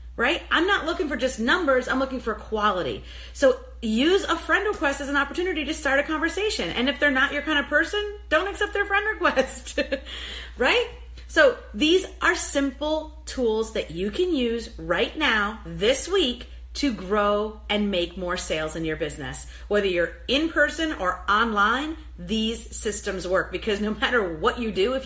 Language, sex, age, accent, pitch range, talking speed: English, female, 40-59, American, 195-285 Hz, 180 wpm